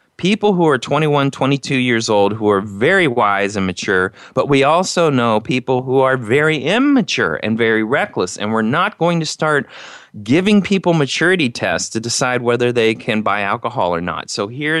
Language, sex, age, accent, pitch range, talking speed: English, male, 30-49, American, 105-135 Hz, 185 wpm